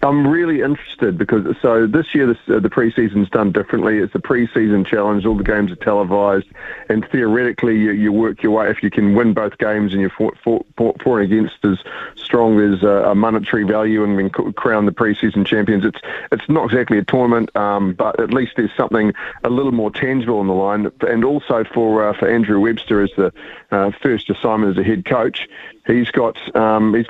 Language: English